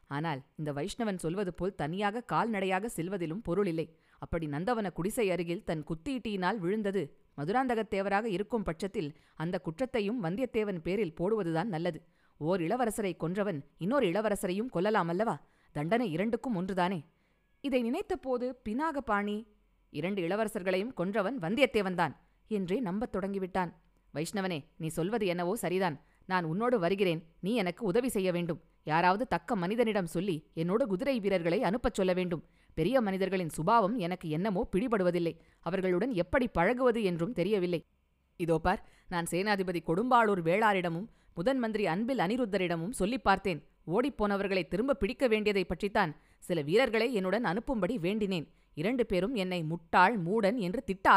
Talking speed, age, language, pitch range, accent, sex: 130 wpm, 20-39, Tamil, 170-215 Hz, native, female